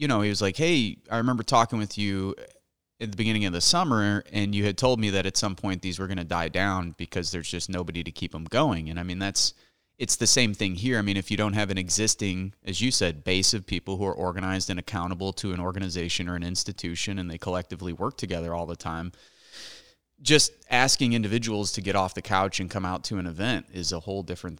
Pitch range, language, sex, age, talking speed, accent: 90-110 Hz, English, male, 30-49, 245 wpm, American